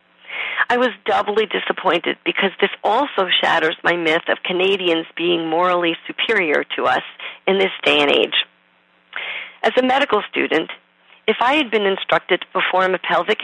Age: 40-59